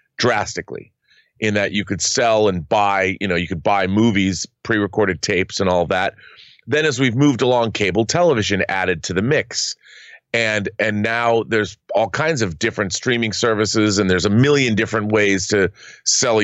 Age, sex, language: 30-49, male, English